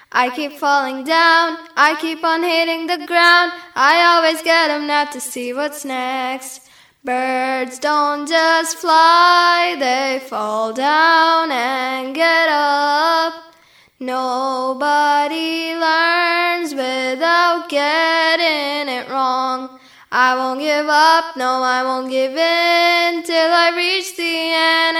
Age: 10-29